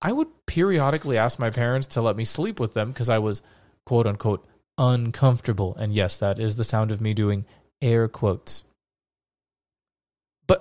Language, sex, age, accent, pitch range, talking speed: English, male, 20-39, American, 110-135 Hz, 165 wpm